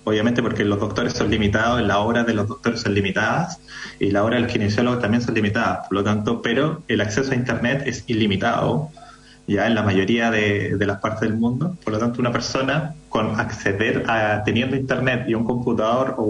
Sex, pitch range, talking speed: male, 110-135 Hz, 205 wpm